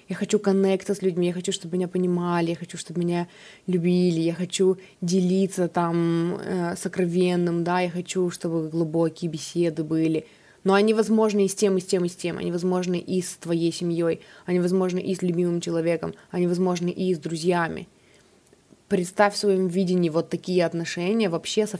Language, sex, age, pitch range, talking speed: Russian, female, 20-39, 170-200 Hz, 180 wpm